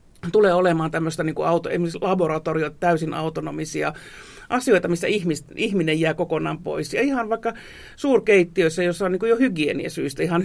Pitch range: 160-190 Hz